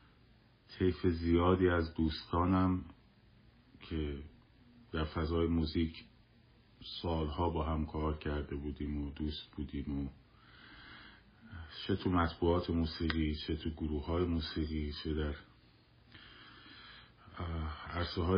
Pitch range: 75-90 Hz